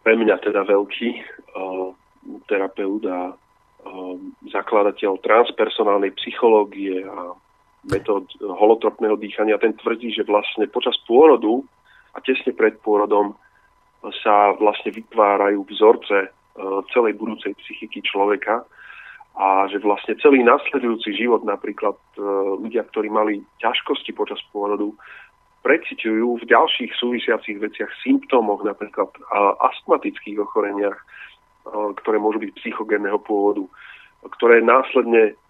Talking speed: 105 wpm